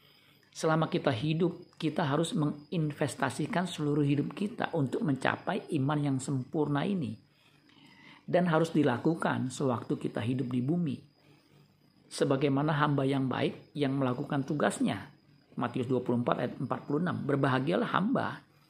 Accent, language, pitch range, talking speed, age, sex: native, Indonesian, 135-160 Hz, 115 wpm, 50-69, male